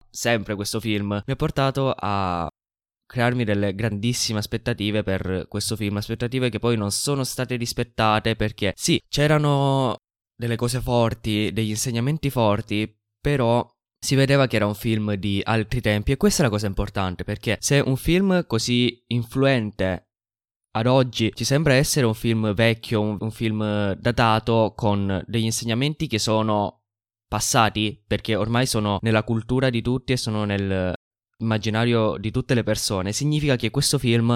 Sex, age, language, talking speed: male, 10-29, Italian, 155 wpm